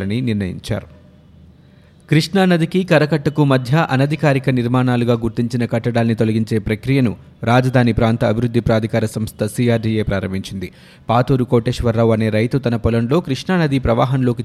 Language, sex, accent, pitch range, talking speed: Telugu, male, native, 110-140 Hz, 100 wpm